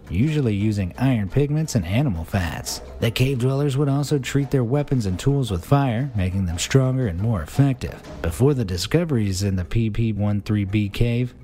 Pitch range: 100-140 Hz